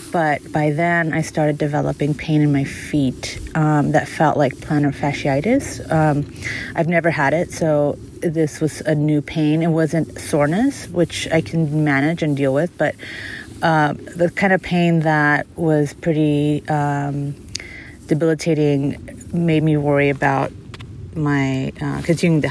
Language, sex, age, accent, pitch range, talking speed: English, female, 30-49, American, 145-165 Hz, 150 wpm